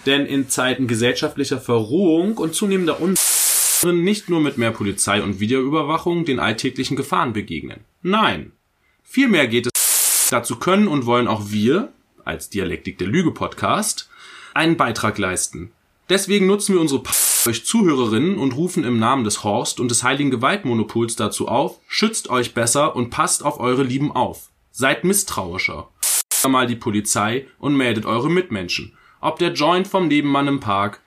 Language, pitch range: German, 115-160 Hz